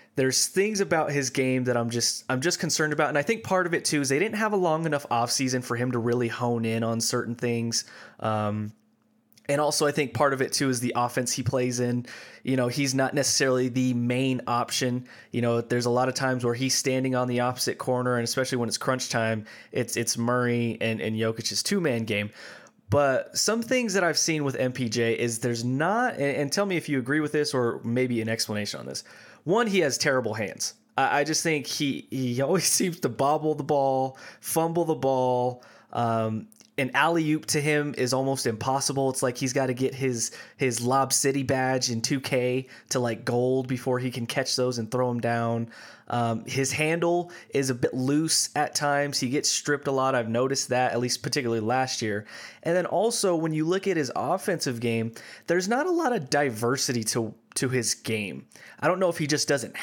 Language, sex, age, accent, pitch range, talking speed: English, male, 20-39, American, 120-150 Hz, 215 wpm